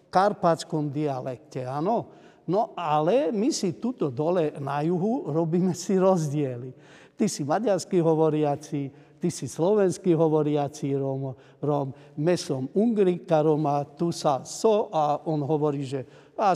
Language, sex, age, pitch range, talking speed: Slovak, male, 50-69, 150-185 Hz, 125 wpm